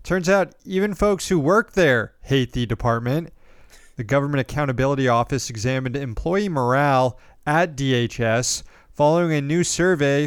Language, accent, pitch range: English, American, 125-165 Hz